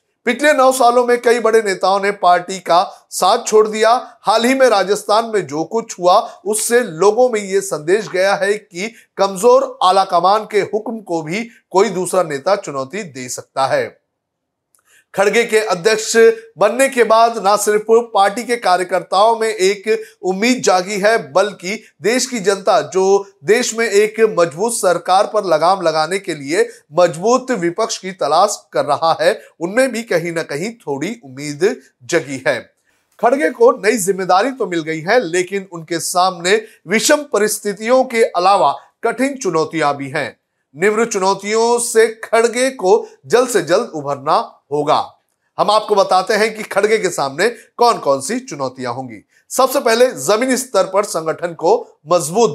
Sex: male